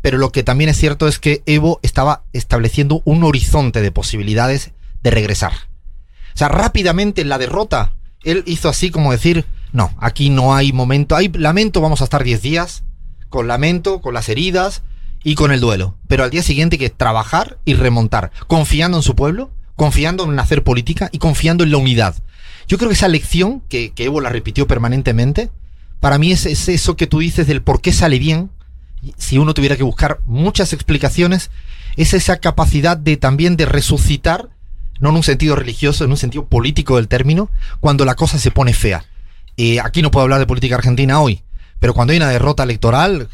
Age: 30-49